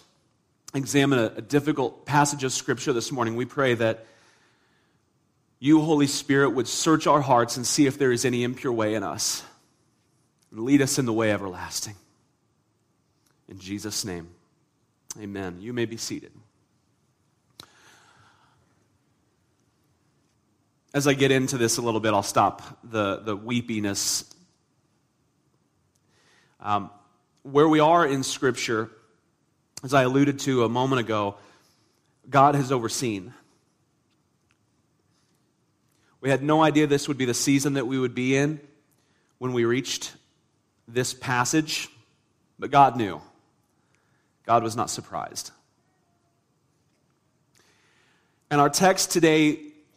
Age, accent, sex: 40-59, American, male